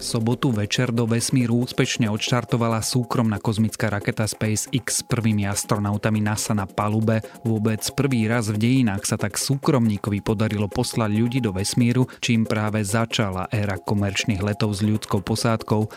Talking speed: 145 wpm